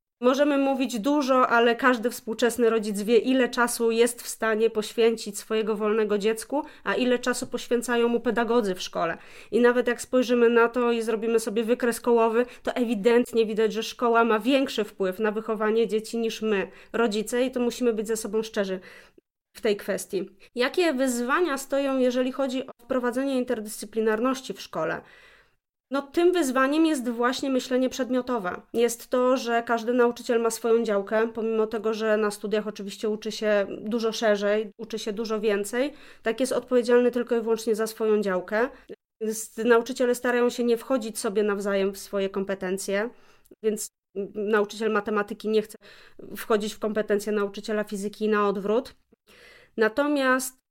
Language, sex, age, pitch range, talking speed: Polish, female, 20-39, 215-245 Hz, 155 wpm